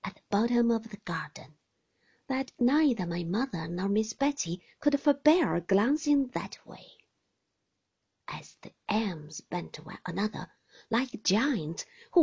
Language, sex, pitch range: Chinese, female, 185-280 Hz